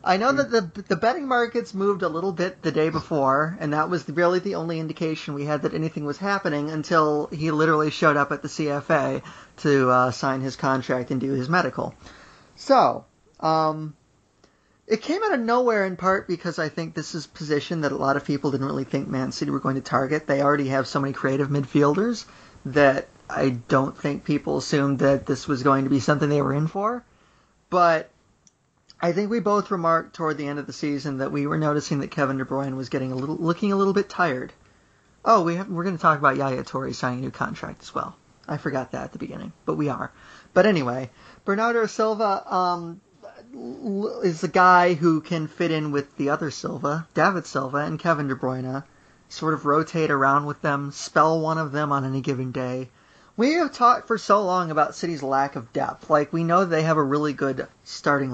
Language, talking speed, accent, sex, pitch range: English, 215 wpm, American, male, 140-175 Hz